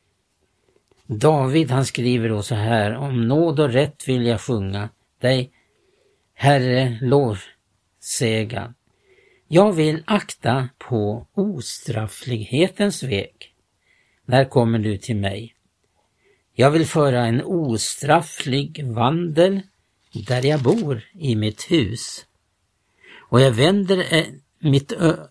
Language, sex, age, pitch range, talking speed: Swedish, male, 60-79, 120-165 Hz, 105 wpm